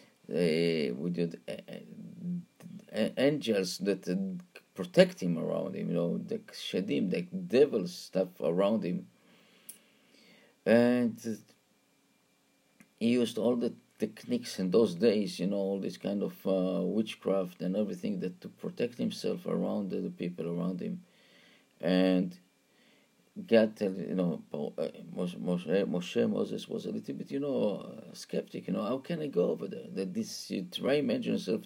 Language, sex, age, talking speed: English, male, 50-69, 155 wpm